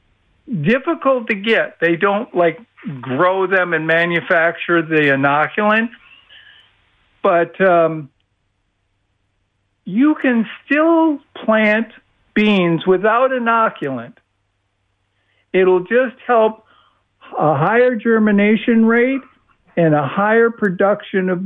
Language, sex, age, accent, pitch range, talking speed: English, male, 60-79, American, 145-215 Hz, 90 wpm